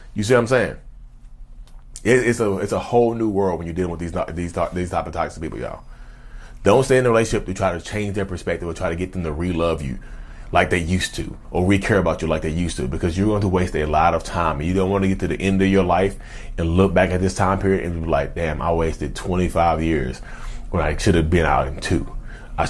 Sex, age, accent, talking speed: male, 30-49, American, 265 wpm